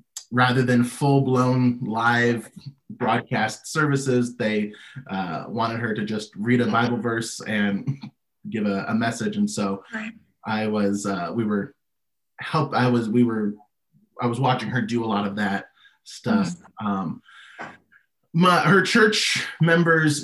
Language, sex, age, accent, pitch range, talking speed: English, male, 20-39, American, 105-130 Hz, 140 wpm